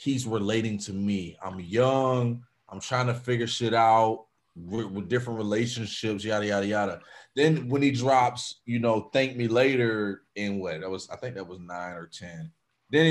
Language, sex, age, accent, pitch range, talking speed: English, male, 30-49, American, 105-140 Hz, 180 wpm